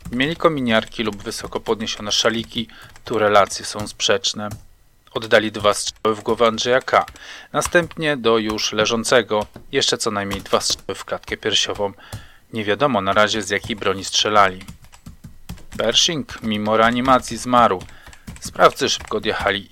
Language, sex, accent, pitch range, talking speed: Polish, male, native, 105-125 Hz, 130 wpm